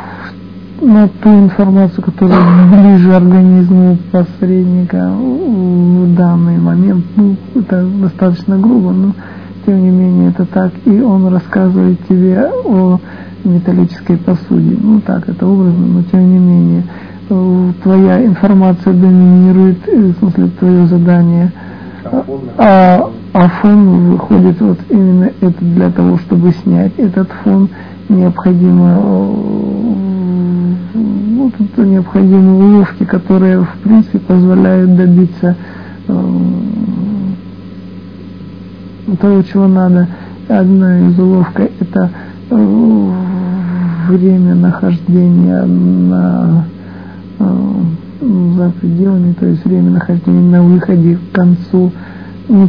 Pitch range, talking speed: 175-195 Hz, 100 wpm